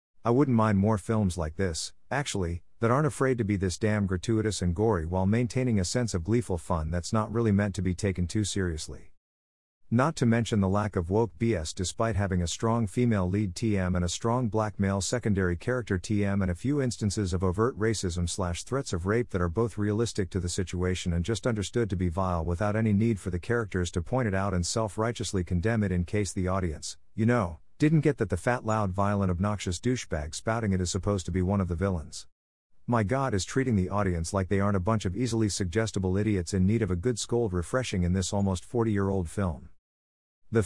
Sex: male